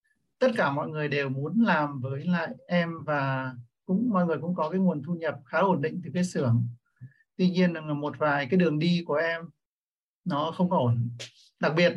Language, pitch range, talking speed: Vietnamese, 150-185 Hz, 205 wpm